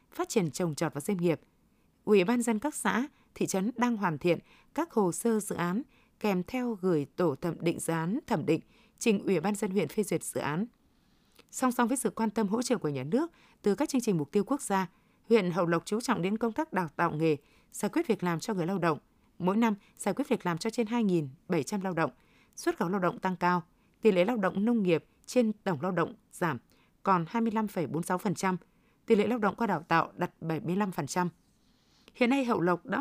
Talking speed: 220 wpm